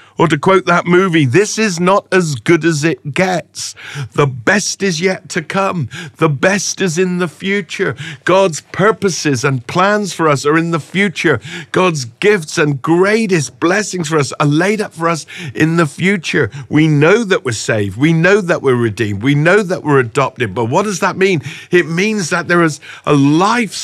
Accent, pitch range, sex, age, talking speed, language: British, 130-180 Hz, male, 50-69, 195 wpm, English